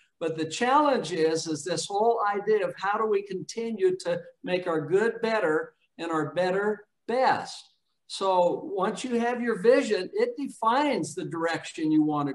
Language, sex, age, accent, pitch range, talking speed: English, male, 60-79, American, 175-230 Hz, 165 wpm